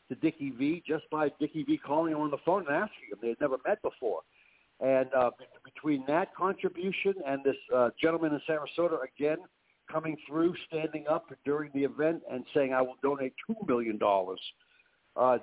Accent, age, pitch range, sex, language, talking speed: American, 60-79, 130-155 Hz, male, English, 185 wpm